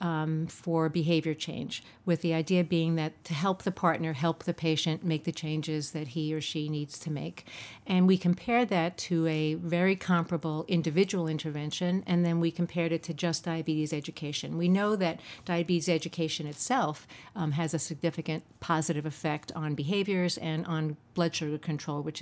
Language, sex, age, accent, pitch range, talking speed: English, female, 50-69, American, 155-175 Hz, 175 wpm